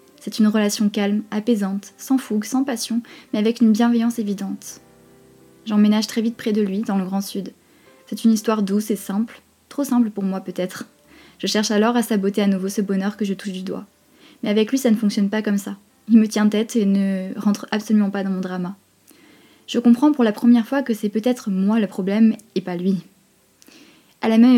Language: French